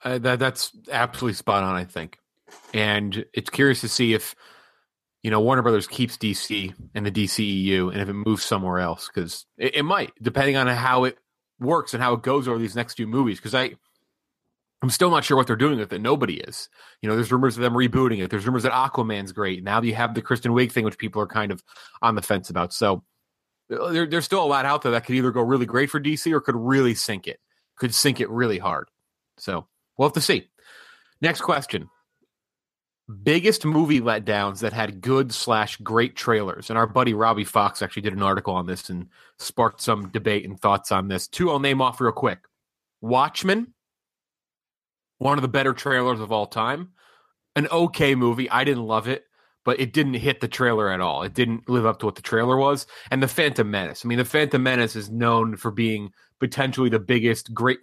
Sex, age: male, 30-49